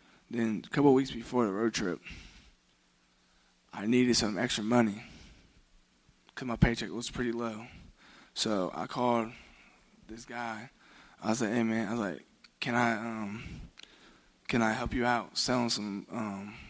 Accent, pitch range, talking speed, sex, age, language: American, 110-125 Hz, 160 wpm, male, 20-39, English